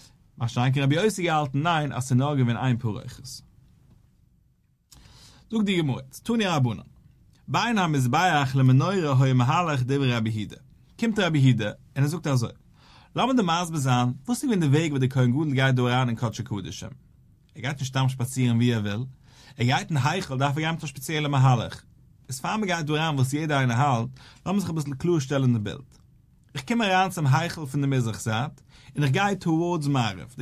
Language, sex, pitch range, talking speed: English, male, 125-165 Hz, 115 wpm